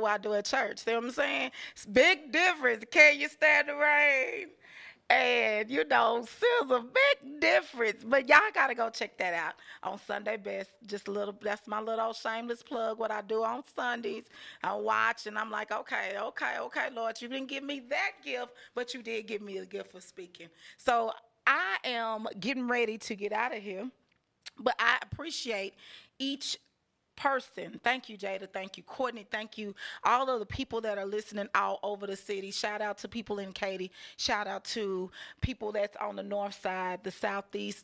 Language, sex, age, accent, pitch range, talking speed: English, female, 30-49, American, 200-250 Hz, 190 wpm